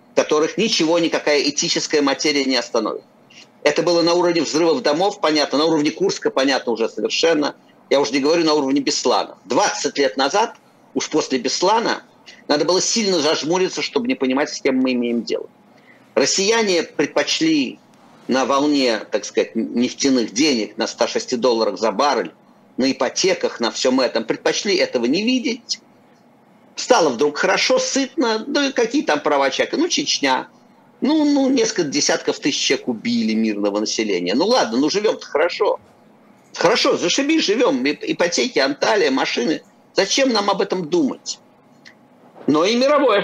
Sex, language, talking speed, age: male, Russian, 145 wpm, 50-69